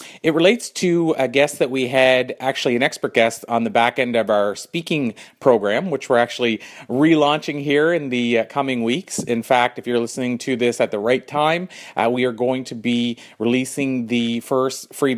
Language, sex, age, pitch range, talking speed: English, male, 30-49, 115-135 Hz, 200 wpm